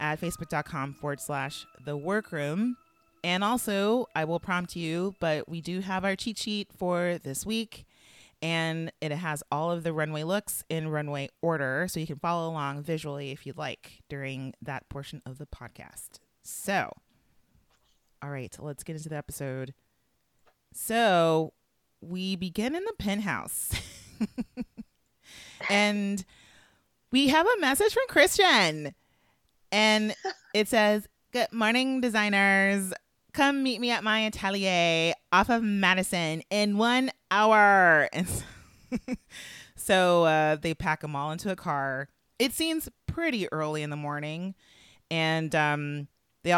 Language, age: English, 30-49